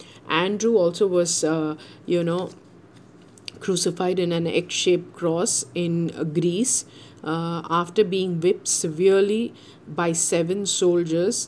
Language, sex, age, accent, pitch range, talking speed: English, female, 50-69, Indian, 165-195 Hz, 110 wpm